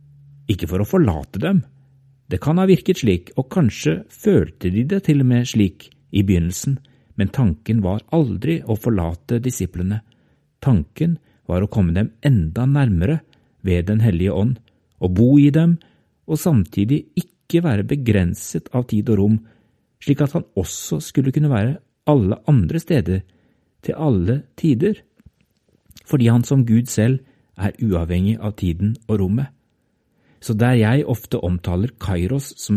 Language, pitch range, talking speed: English, 100-140 Hz, 150 wpm